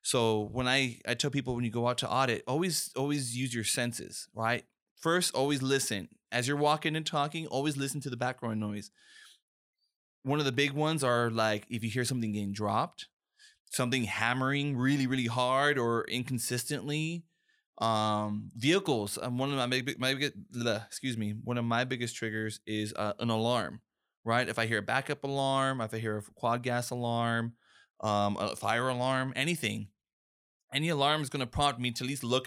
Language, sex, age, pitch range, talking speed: English, male, 20-39, 110-135 Hz, 185 wpm